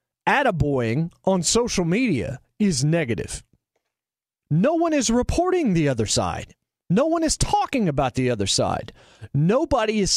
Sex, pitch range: male, 140-220 Hz